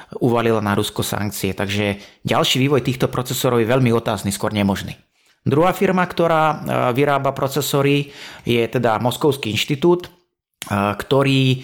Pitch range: 110-135 Hz